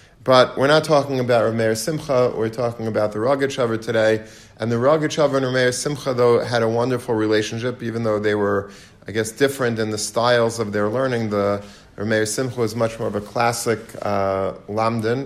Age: 40-59